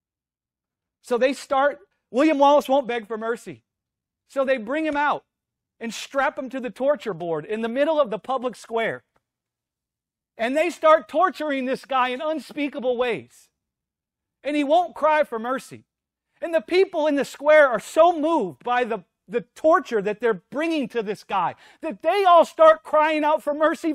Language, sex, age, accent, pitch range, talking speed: English, male, 40-59, American, 235-315 Hz, 175 wpm